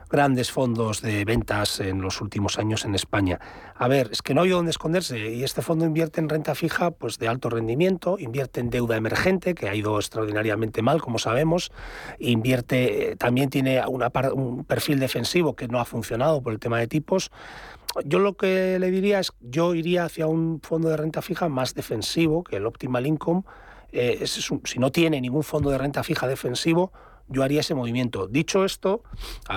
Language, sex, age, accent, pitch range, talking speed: Spanish, male, 40-59, Spanish, 115-155 Hz, 195 wpm